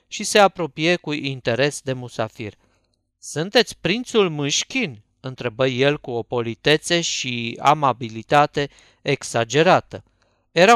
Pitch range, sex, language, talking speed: 125-170 Hz, male, Romanian, 105 wpm